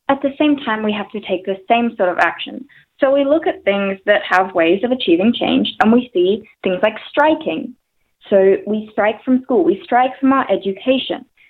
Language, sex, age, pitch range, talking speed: English, female, 20-39, 200-270 Hz, 210 wpm